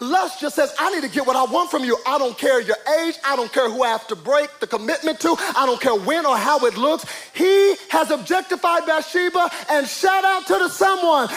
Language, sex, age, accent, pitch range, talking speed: English, male, 30-49, American, 310-400 Hz, 245 wpm